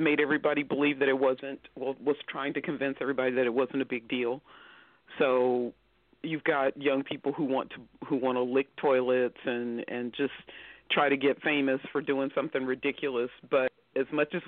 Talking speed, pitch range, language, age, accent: 190 wpm, 135-155 Hz, English, 50-69, American